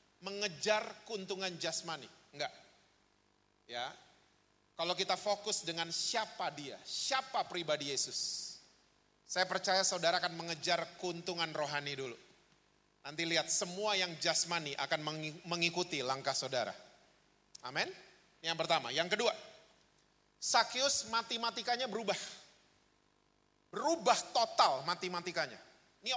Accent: native